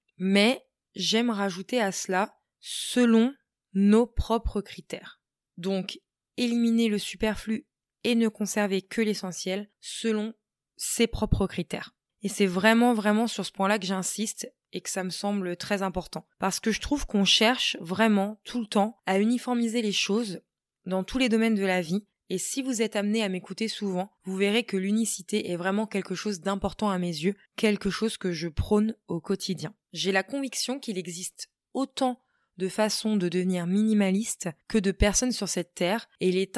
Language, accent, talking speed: French, French, 175 wpm